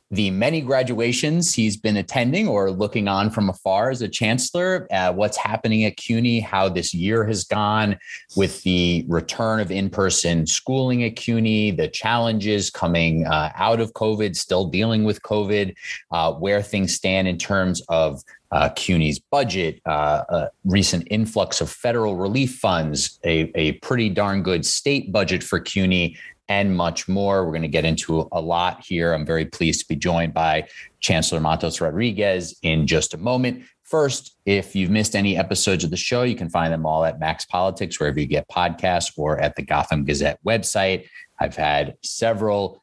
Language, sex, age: English, male, 30-49